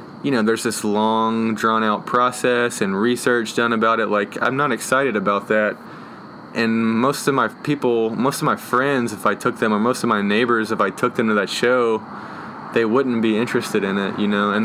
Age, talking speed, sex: 20-39, 215 wpm, male